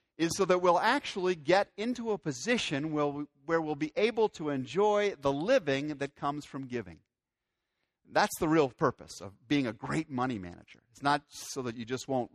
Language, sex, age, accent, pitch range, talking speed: English, male, 50-69, American, 120-160 Hz, 190 wpm